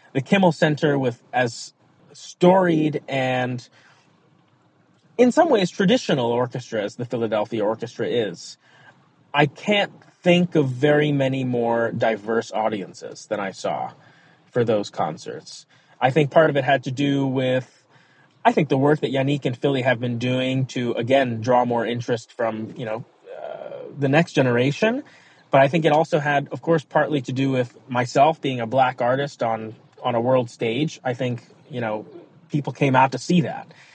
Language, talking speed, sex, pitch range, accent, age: English, 170 wpm, male, 125-155 Hz, American, 30-49